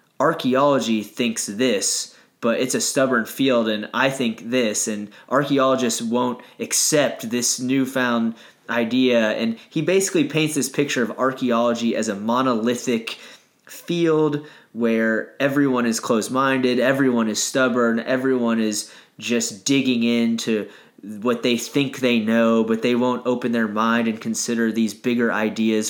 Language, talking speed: English, 135 wpm